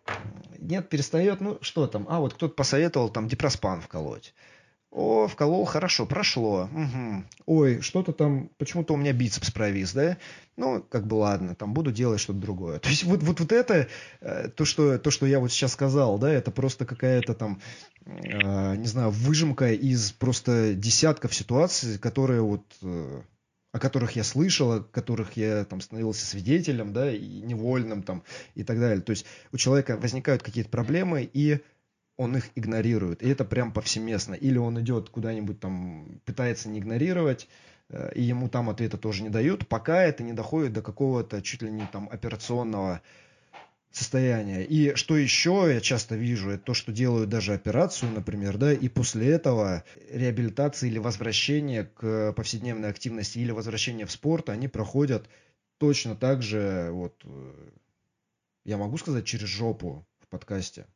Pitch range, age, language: 105-140 Hz, 20-39, Russian